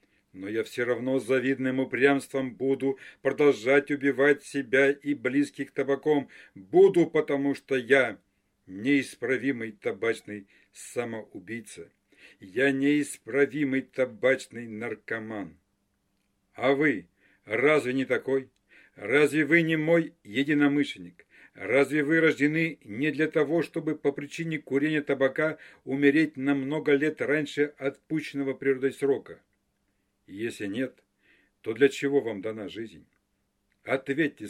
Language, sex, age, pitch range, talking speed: Russian, male, 60-79, 110-145 Hz, 110 wpm